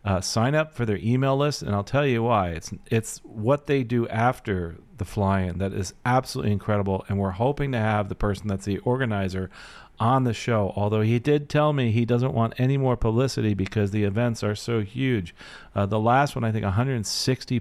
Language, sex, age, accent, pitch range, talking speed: English, male, 40-59, American, 95-125 Hz, 210 wpm